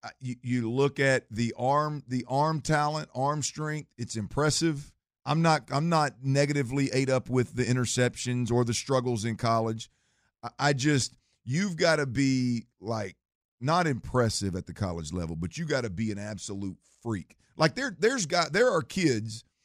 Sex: male